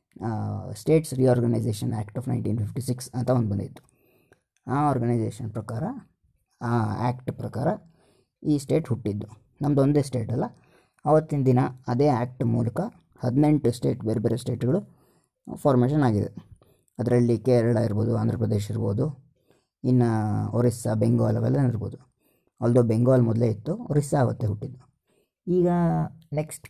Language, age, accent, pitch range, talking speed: Kannada, 20-39, native, 115-140 Hz, 120 wpm